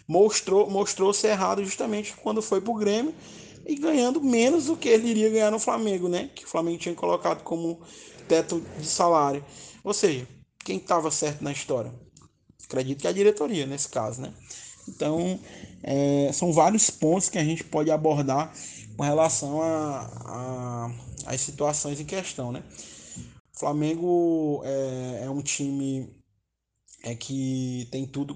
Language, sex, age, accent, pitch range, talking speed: Portuguese, male, 20-39, Brazilian, 135-175 Hz, 145 wpm